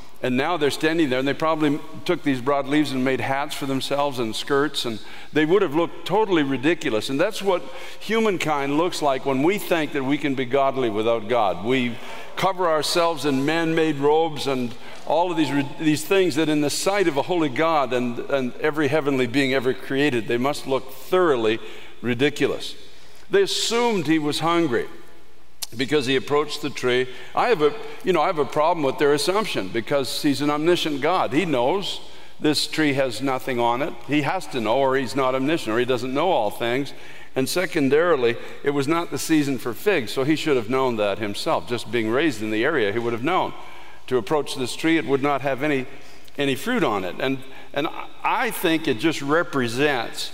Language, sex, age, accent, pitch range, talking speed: English, male, 60-79, American, 130-160 Hz, 200 wpm